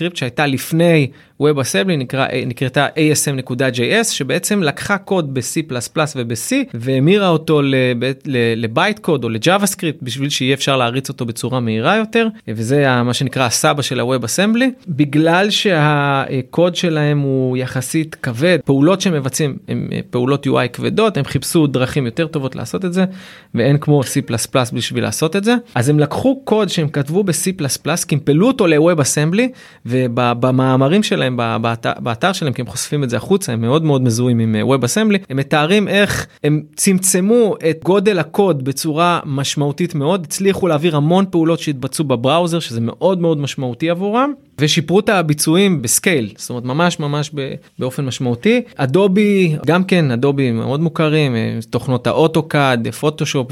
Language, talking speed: Hebrew, 150 wpm